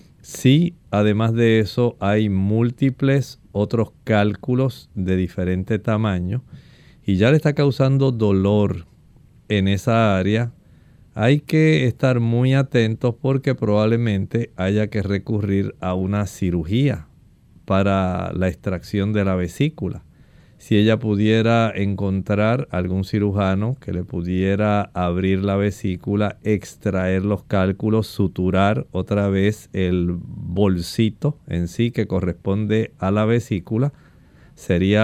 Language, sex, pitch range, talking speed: Spanish, male, 95-115 Hz, 115 wpm